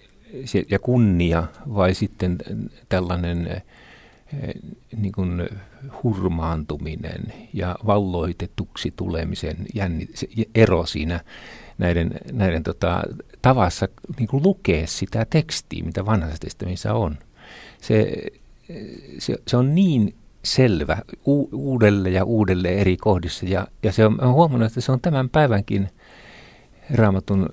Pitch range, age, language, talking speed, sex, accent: 85-110 Hz, 50-69, Finnish, 105 wpm, male, native